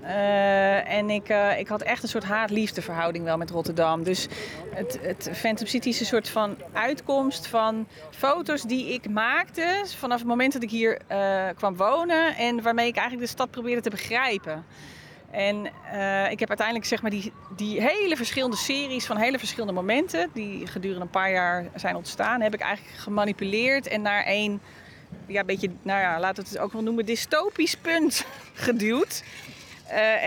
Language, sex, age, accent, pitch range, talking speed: English, female, 30-49, Dutch, 185-230 Hz, 180 wpm